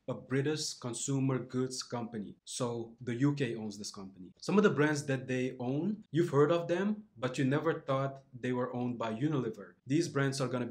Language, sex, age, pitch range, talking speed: English, male, 20-39, 125-145 Hz, 195 wpm